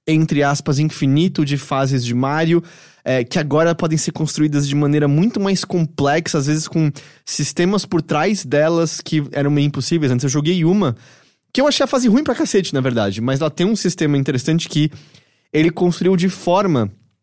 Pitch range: 140-175 Hz